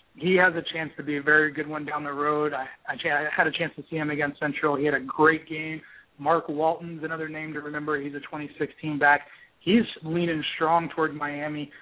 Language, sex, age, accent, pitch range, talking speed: English, male, 30-49, American, 145-160 Hz, 230 wpm